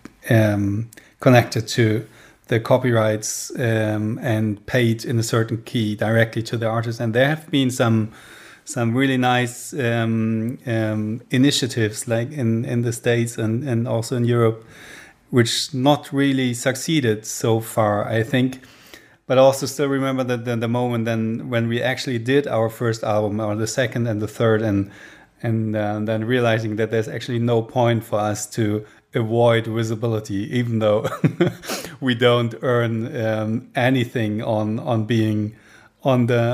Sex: male